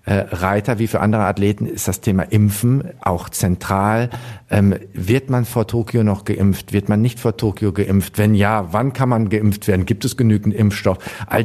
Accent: German